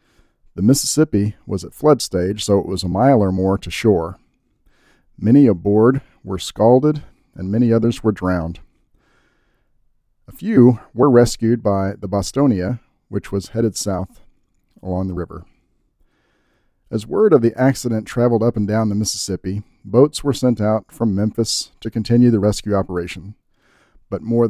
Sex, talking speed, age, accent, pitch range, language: male, 150 wpm, 40-59, American, 95-120 Hz, English